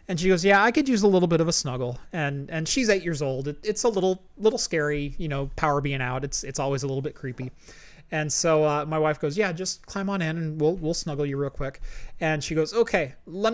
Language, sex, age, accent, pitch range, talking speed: English, male, 30-49, American, 150-185 Hz, 265 wpm